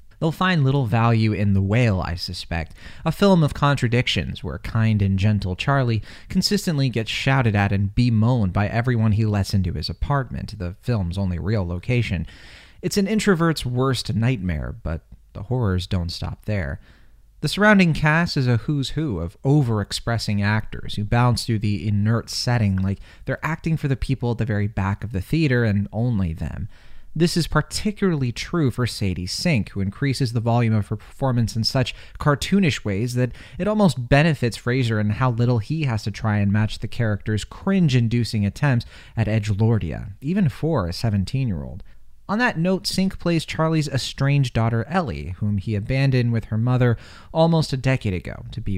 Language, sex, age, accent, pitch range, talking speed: English, male, 30-49, American, 100-135 Hz, 175 wpm